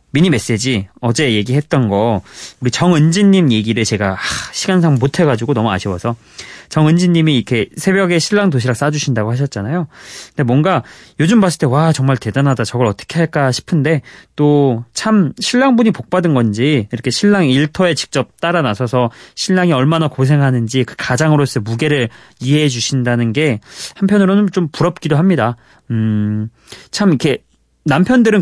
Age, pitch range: 20-39, 115-165 Hz